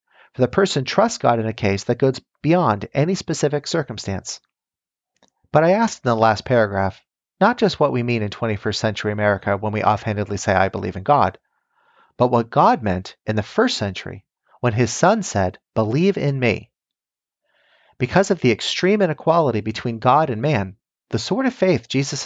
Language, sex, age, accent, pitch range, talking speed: English, male, 40-59, American, 110-165 Hz, 180 wpm